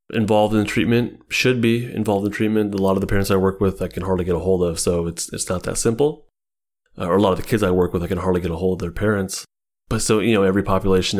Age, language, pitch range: 30-49, English, 95-110 Hz